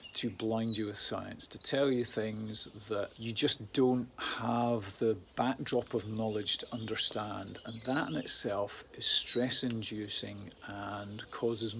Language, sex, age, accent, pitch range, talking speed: English, male, 40-59, British, 110-125 Hz, 145 wpm